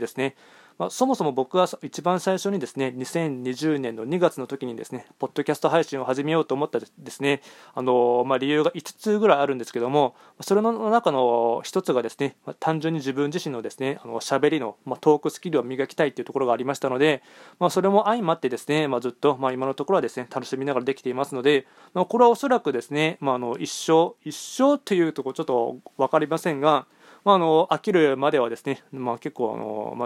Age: 20-39